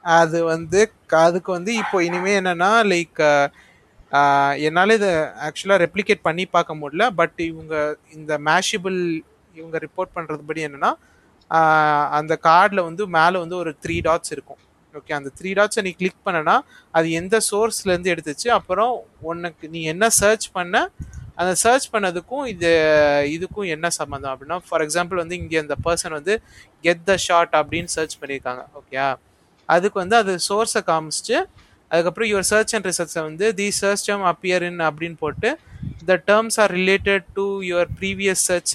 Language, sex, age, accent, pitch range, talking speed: Tamil, male, 30-49, native, 155-195 Hz, 150 wpm